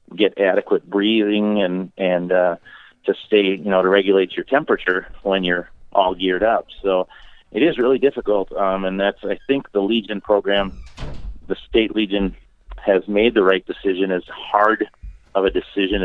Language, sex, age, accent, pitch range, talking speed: English, male, 40-59, American, 90-100 Hz, 170 wpm